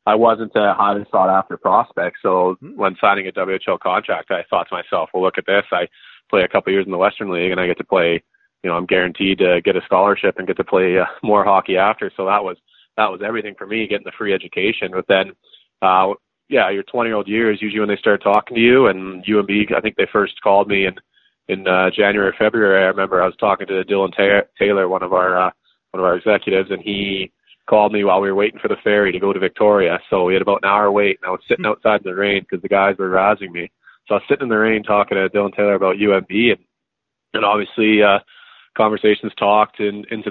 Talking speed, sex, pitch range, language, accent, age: 245 wpm, male, 95-105 Hz, English, American, 20-39